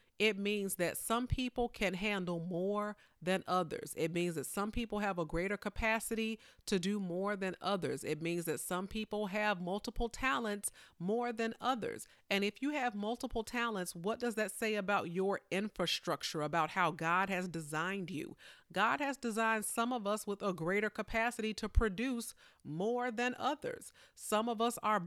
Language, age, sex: English, 40-59, female